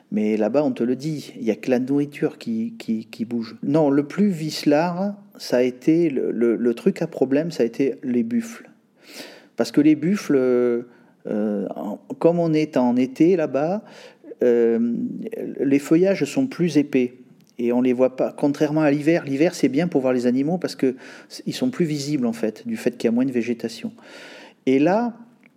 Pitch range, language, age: 125-175 Hz, French, 40-59